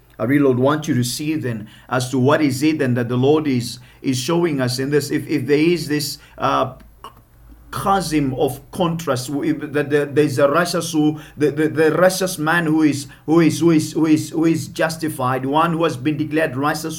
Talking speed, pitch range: 175 wpm, 130-160 Hz